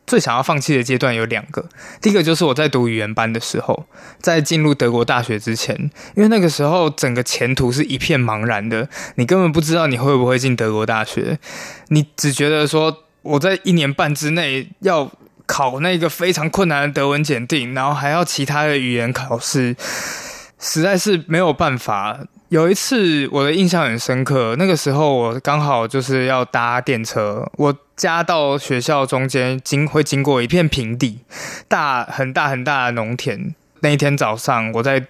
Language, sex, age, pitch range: Chinese, male, 20-39, 125-160 Hz